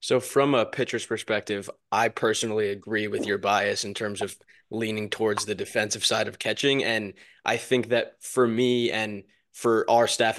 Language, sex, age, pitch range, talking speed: English, male, 20-39, 110-130 Hz, 180 wpm